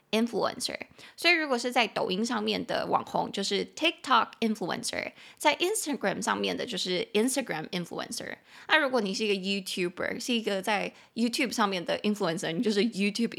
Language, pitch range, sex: Chinese, 195-250 Hz, female